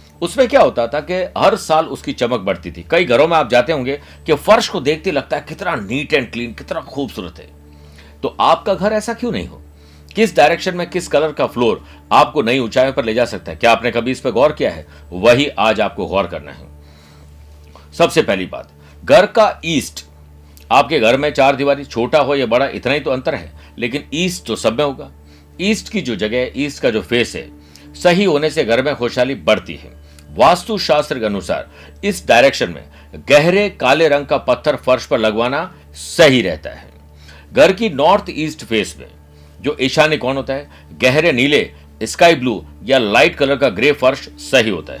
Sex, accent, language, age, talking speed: male, native, Hindi, 60-79, 195 wpm